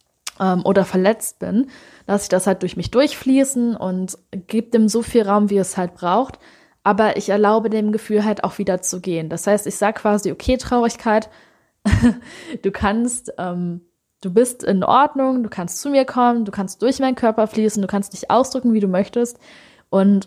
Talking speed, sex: 185 wpm, female